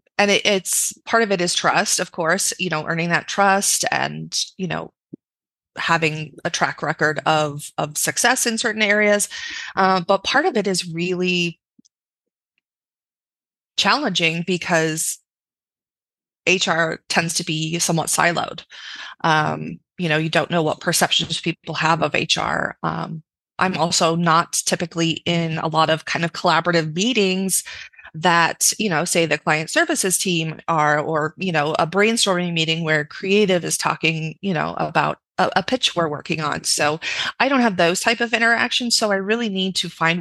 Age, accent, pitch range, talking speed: 20-39, American, 160-190 Hz, 165 wpm